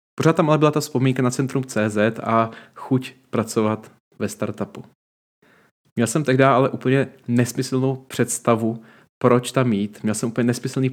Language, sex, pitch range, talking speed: Czech, male, 105-125 Hz, 155 wpm